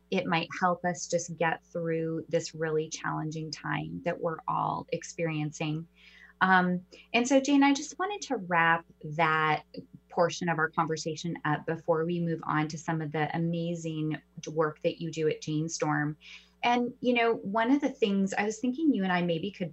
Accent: American